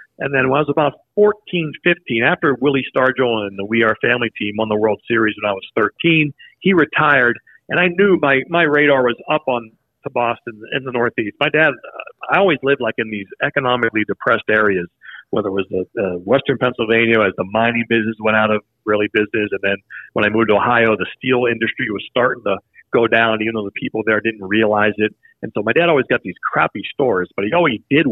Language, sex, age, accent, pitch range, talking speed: English, male, 50-69, American, 105-135 Hz, 220 wpm